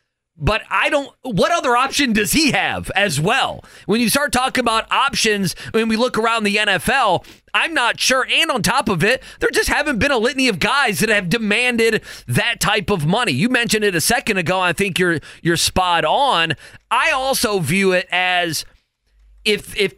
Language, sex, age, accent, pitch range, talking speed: English, male, 30-49, American, 180-225 Hz, 200 wpm